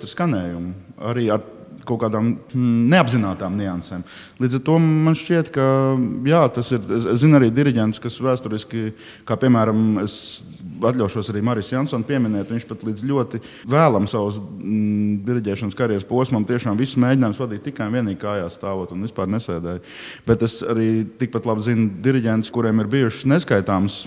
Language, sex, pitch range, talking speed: English, male, 105-130 Hz, 145 wpm